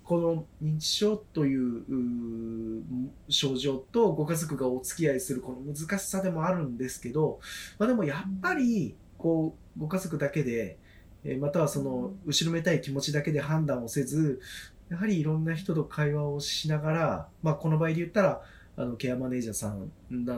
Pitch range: 125-185 Hz